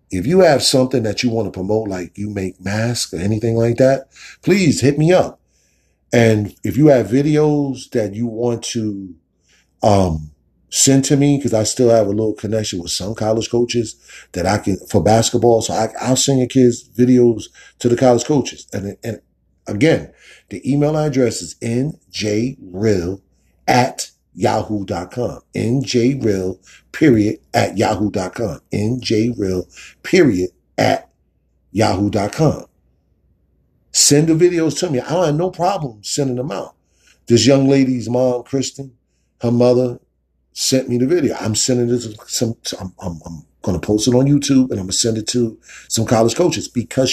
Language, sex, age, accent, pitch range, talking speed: English, male, 40-59, American, 100-130 Hz, 160 wpm